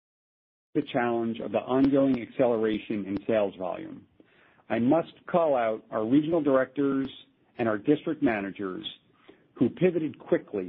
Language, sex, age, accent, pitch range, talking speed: English, male, 50-69, American, 125-160 Hz, 130 wpm